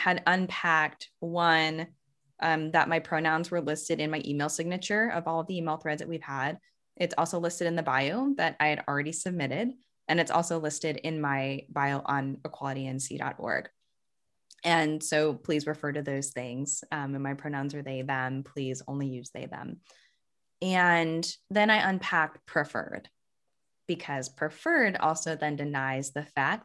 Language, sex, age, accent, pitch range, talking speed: English, female, 10-29, American, 145-175 Hz, 160 wpm